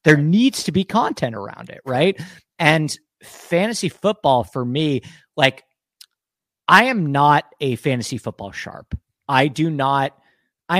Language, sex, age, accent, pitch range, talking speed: English, male, 40-59, American, 120-180 Hz, 140 wpm